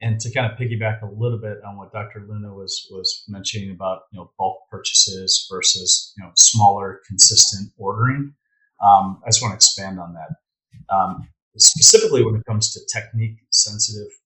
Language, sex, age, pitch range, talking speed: English, male, 40-59, 105-120 Hz, 175 wpm